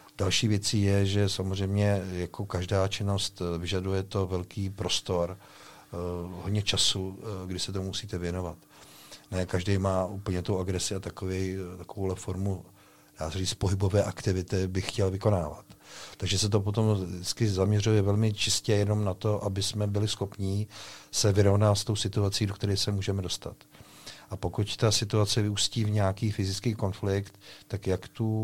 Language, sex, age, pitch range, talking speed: Czech, male, 50-69, 95-105 Hz, 155 wpm